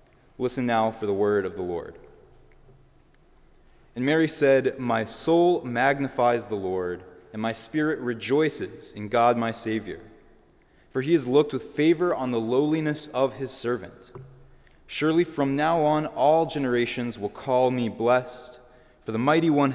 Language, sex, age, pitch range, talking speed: English, male, 20-39, 110-140 Hz, 150 wpm